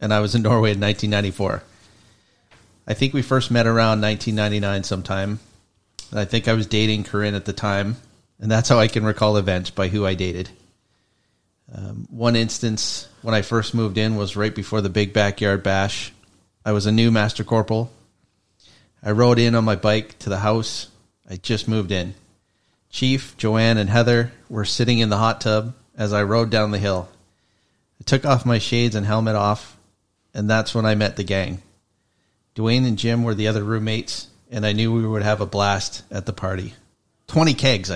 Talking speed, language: 190 wpm, English